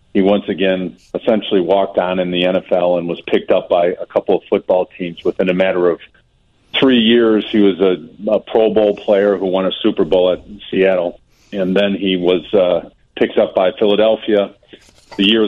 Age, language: 50-69, English